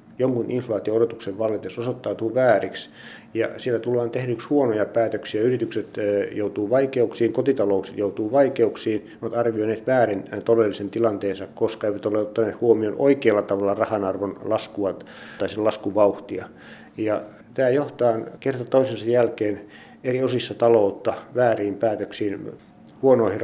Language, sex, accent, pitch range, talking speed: Finnish, male, native, 105-125 Hz, 120 wpm